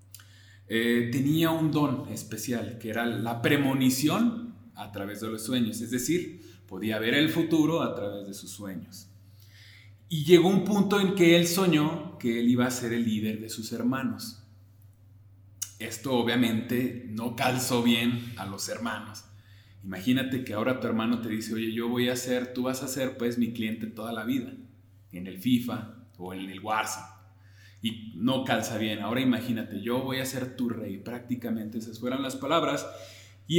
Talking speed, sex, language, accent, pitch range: 175 wpm, male, Spanish, Mexican, 100-125 Hz